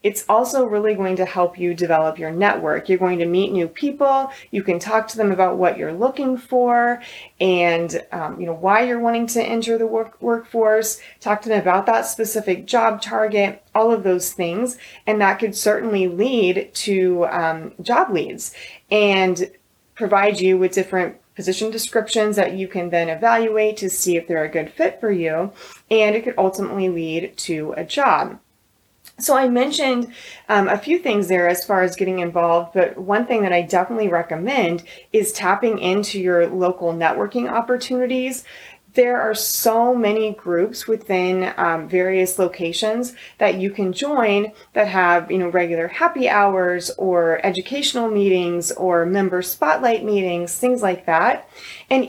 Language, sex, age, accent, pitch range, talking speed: English, female, 30-49, American, 180-230 Hz, 165 wpm